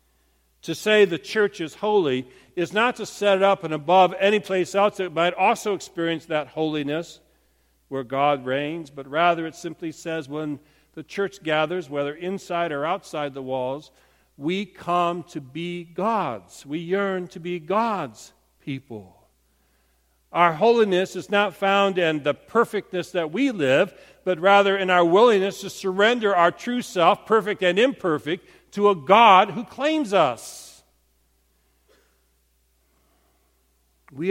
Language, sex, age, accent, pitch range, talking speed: English, male, 50-69, American, 140-195 Hz, 145 wpm